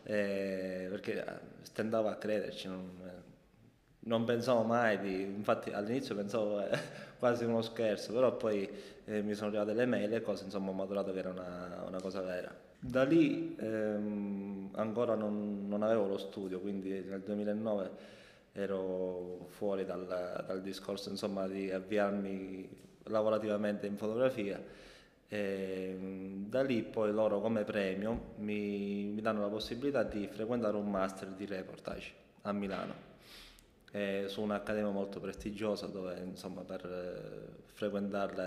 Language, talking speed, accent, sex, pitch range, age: Italian, 135 wpm, native, male, 95-105 Hz, 20-39